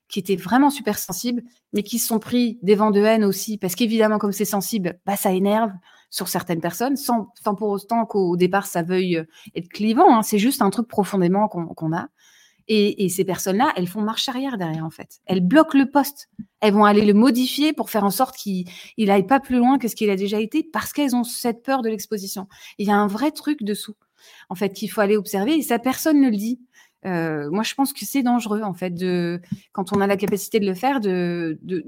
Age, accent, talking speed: 30-49, French, 235 wpm